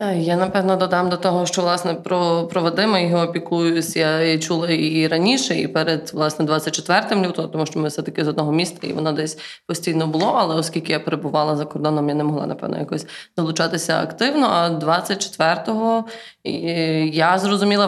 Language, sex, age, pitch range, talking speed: Ukrainian, female, 20-39, 165-195 Hz, 175 wpm